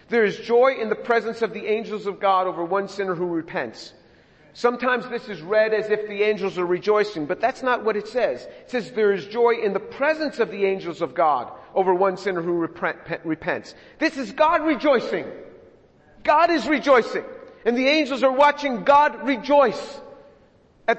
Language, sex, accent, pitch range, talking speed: English, male, American, 185-230 Hz, 185 wpm